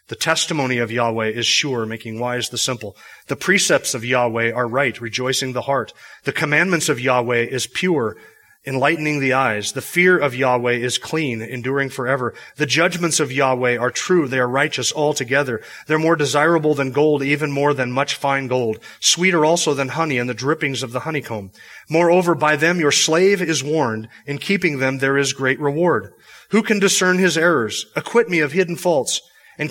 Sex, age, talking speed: male, 30-49, 185 wpm